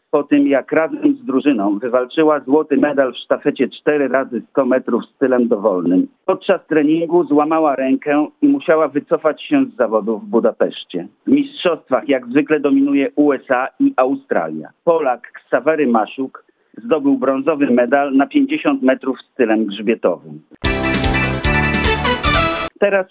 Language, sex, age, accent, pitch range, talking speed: Polish, male, 50-69, native, 130-190 Hz, 130 wpm